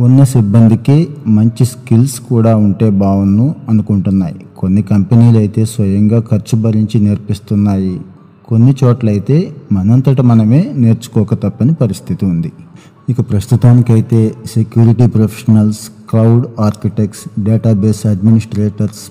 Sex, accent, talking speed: male, native, 90 wpm